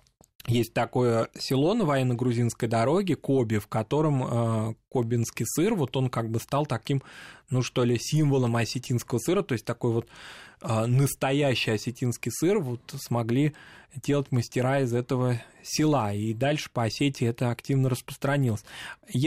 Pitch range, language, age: 115-145 Hz, Russian, 20-39